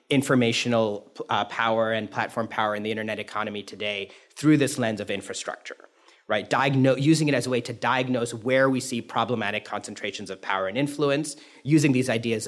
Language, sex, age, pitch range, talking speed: English, male, 30-49, 115-150 Hz, 180 wpm